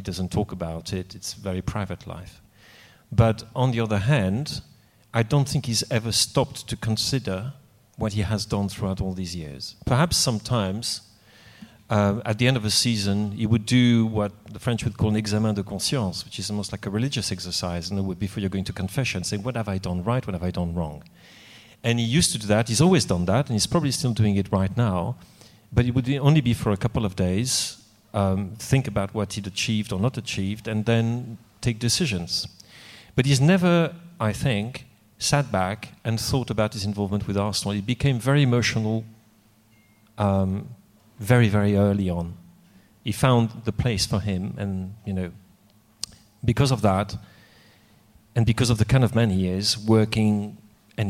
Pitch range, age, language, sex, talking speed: 100-115 Hz, 40-59, English, male, 195 wpm